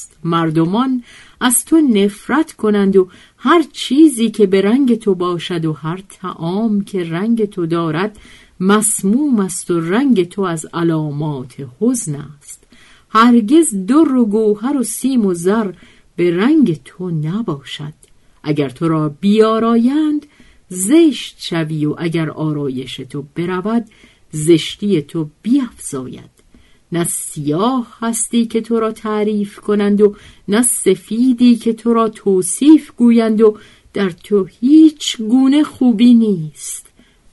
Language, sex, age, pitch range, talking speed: Persian, female, 50-69, 155-230 Hz, 125 wpm